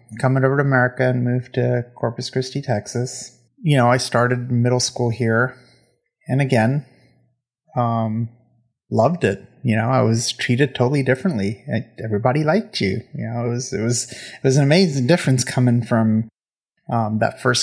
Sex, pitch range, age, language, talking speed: male, 115-130 Hz, 30-49, English, 165 wpm